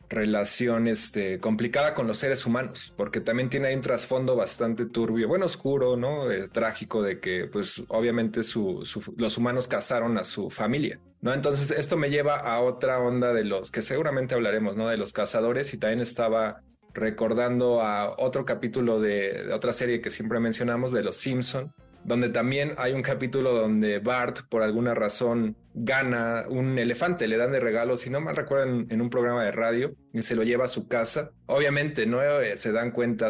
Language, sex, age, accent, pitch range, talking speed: Spanish, male, 20-39, Mexican, 115-130 Hz, 185 wpm